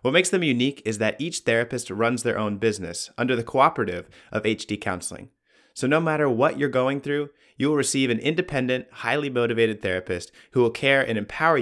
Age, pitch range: 30-49, 100-135 Hz